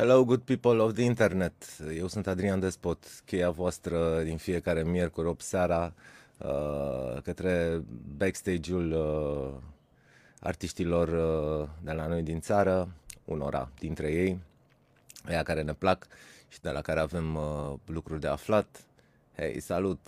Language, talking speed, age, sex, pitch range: Romanian, 135 wpm, 20-39, male, 80-95 Hz